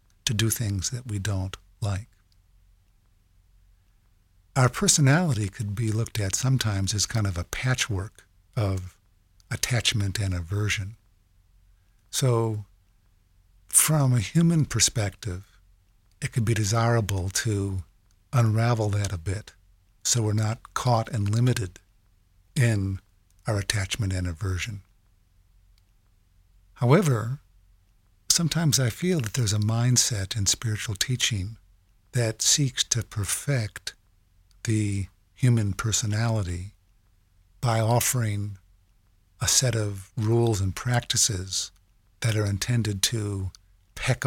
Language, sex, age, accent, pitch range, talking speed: English, male, 50-69, American, 95-115 Hz, 105 wpm